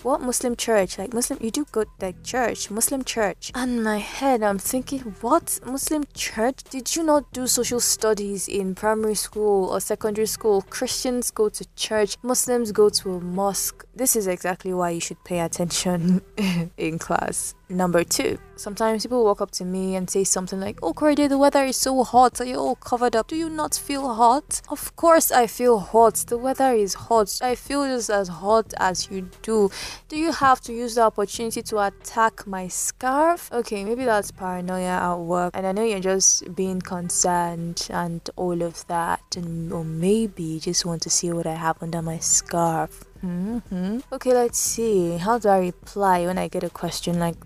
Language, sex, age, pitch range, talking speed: English, female, 10-29, 180-230 Hz, 195 wpm